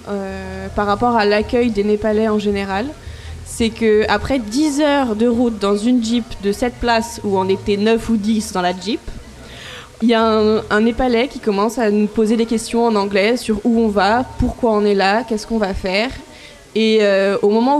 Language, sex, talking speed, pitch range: French, female, 205 wpm, 205-250 Hz